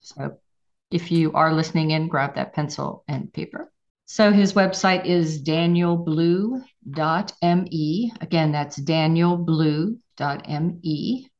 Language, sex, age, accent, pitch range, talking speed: English, female, 50-69, American, 150-180 Hz, 100 wpm